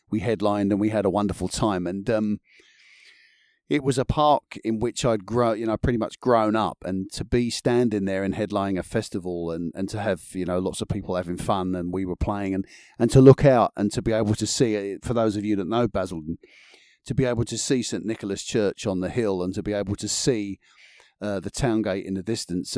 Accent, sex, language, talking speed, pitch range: British, male, English, 235 wpm, 95-115 Hz